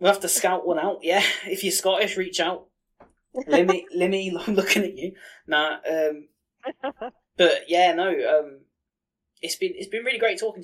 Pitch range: 125-205 Hz